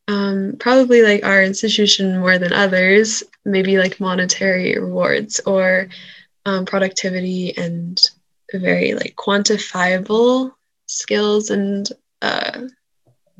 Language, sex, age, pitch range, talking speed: English, female, 20-39, 185-220 Hz, 100 wpm